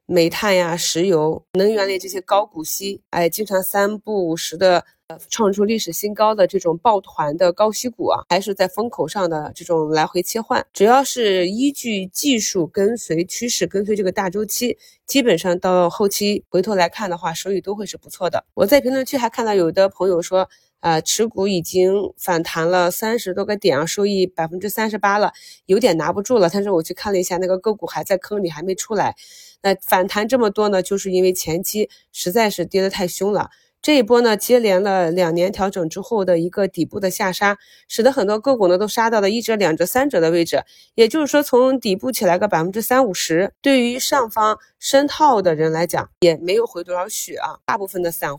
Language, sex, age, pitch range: Chinese, female, 20-39, 175-215 Hz